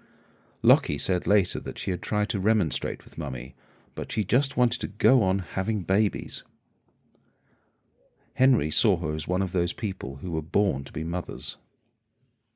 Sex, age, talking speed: male, 50-69, 160 wpm